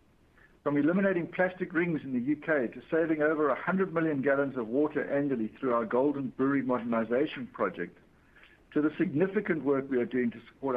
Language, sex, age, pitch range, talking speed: English, male, 60-79, 125-175 Hz, 175 wpm